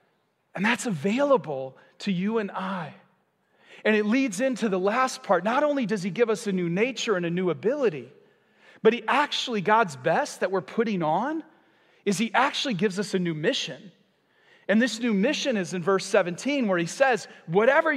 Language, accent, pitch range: English, American, 200-255 Hz